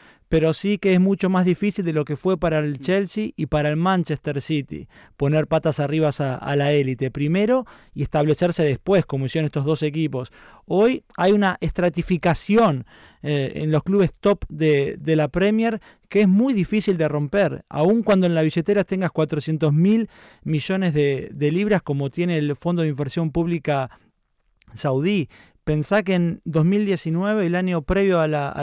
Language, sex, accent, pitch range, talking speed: Spanish, male, Argentinian, 150-195 Hz, 175 wpm